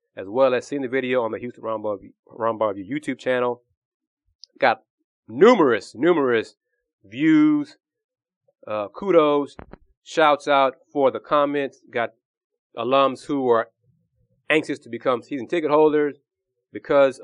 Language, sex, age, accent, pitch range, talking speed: English, male, 30-49, American, 120-190 Hz, 120 wpm